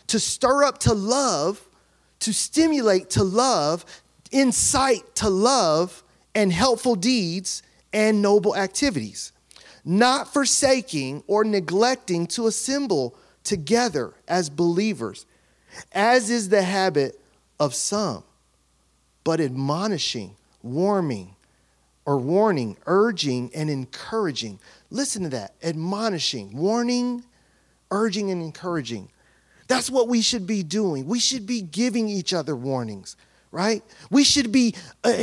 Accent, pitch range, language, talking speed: American, 155-245 Hz, English, 115 wpm